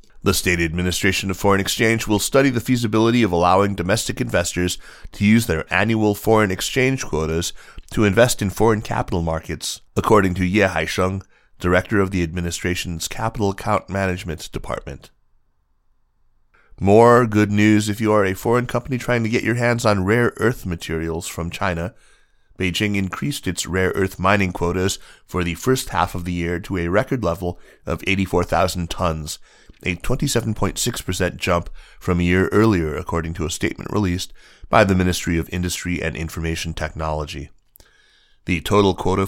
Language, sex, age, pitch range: English, male, 30-49, 85-105 Hz